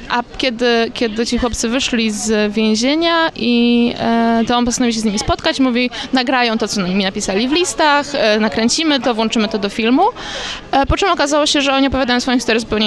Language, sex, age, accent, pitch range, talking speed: Polish, female, 20-39, native, 210-245 Hz, 200 wpm